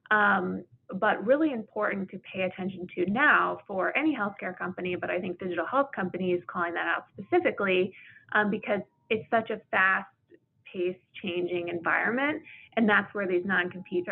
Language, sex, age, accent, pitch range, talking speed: English, female, 20-39, American, 180-235 Hz, 155 wpm